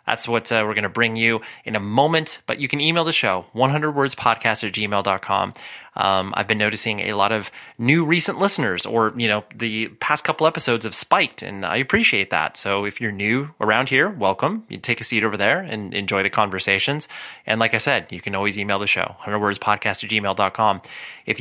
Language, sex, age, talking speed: English, male, 20-39, 200 wpm